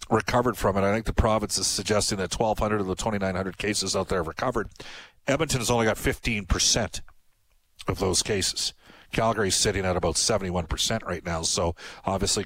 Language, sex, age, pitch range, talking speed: English, male, 40-59, 100-125 Hz, 175 wpm